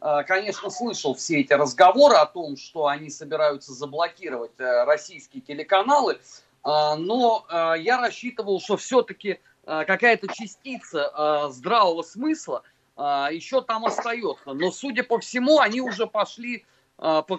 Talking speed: 115 wpm